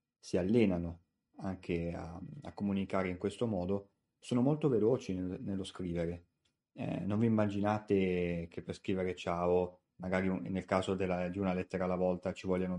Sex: male